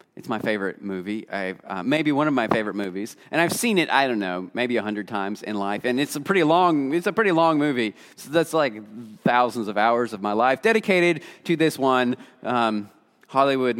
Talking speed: 215 wpm